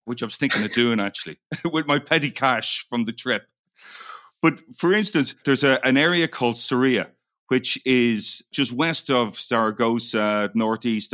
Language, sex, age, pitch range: English, male, 40-59, 110-140 Hz